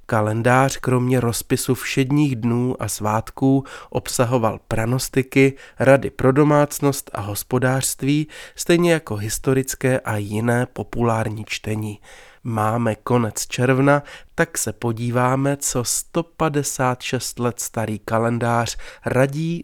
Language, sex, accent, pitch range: Czech, male, native, 110-145 Hz